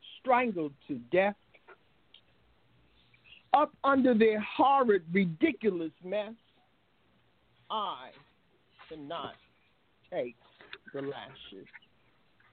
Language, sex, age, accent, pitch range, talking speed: English, male, 60-79, American, 165-225 Hz, 65 wpm